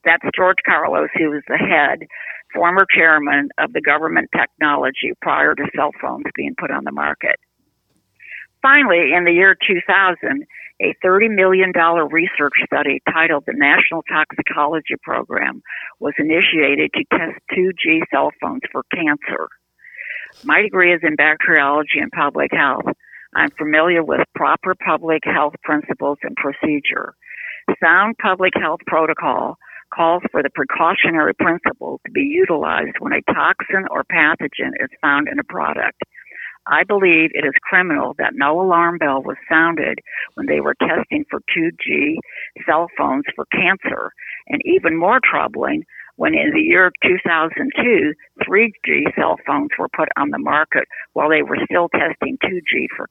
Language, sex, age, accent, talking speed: English, female, 60-79, American, 145 wpm